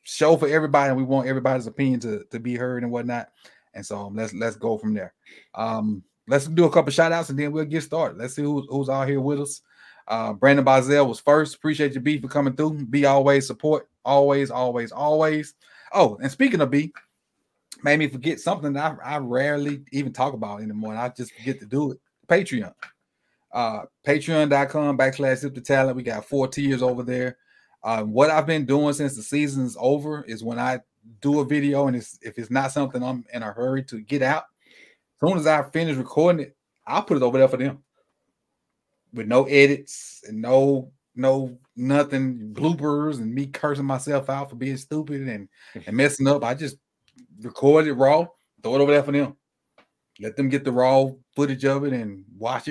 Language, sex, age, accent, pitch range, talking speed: English, male, 30-49, American, 125-145 Hz, 205 wpm